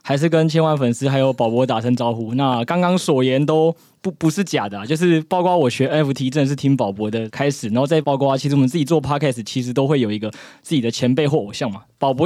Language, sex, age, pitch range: Chinese, male, 20-39, 125-165 Hz